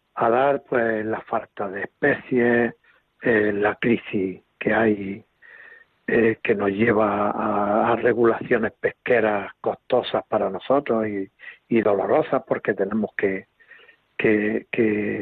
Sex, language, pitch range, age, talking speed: male, Spanish, 105-125 Hz, 60-79, 120 wpm